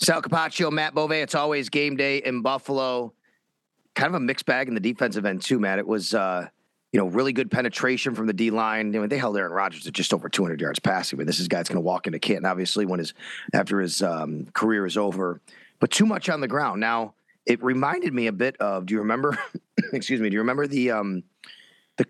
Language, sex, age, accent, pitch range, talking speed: English, male, 30-49, American, 110-135 Hz, 240 wpm